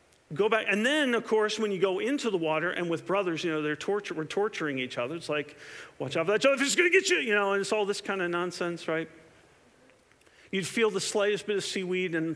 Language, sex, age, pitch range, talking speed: English, male, 50-69, 155-205 Hz, 260 wpm